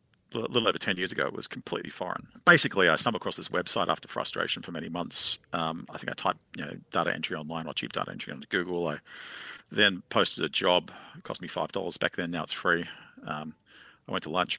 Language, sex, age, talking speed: English, male, 40-59, 235 wpm